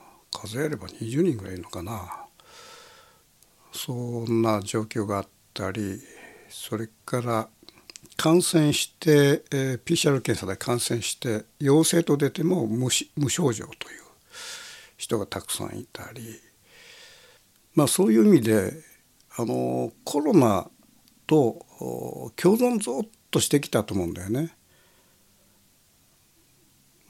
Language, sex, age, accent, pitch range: Japanese, male, 60-79, native, 105-155 Hz